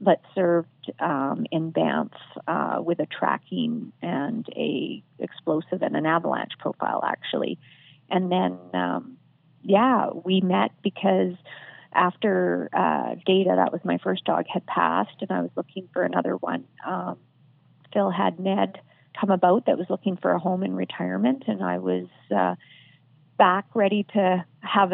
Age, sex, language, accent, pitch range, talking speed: 40-59, female, English, American, 135-195 Hz, 150 wpm